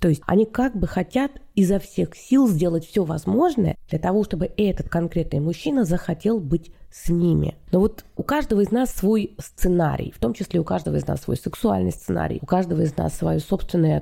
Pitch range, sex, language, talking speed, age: 165-230 Hz, female, Russian, 195 wpm, 30-49